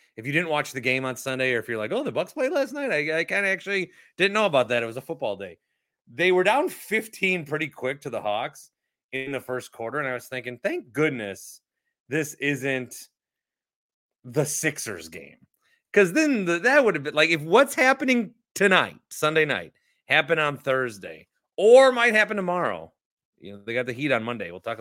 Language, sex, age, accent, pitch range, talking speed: English, male, 30-49, American, 145-220 Hz, 210 wpm